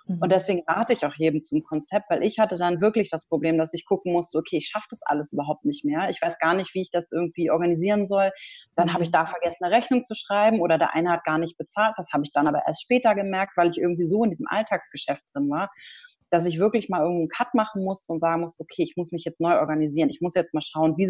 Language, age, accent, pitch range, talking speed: German, 30-49, German, 170-210 Hz, 265 wpm